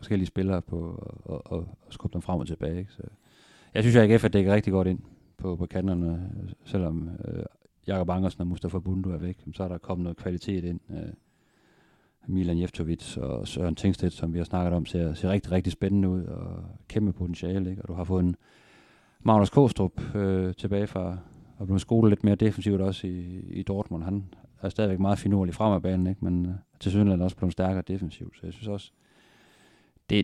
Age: 40-59